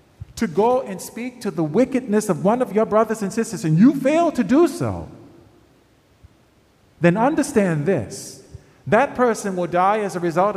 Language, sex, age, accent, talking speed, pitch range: English, male, 40-59, American, 170 wpm, 135-220 Hz